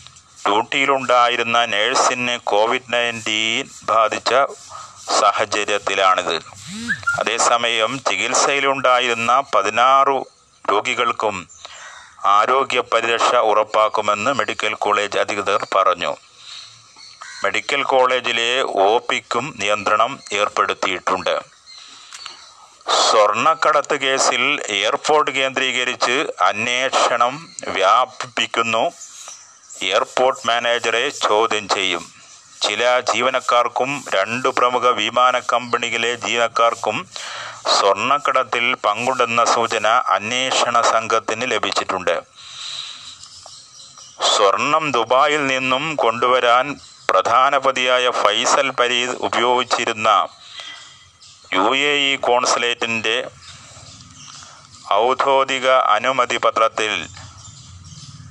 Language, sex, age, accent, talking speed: Malayalam, male, 30-49, native, 60 wpm